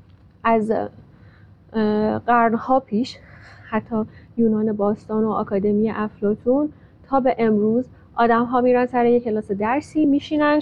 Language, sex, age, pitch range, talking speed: Persian, female, 10-29, 215-250 Hz, 120 wpm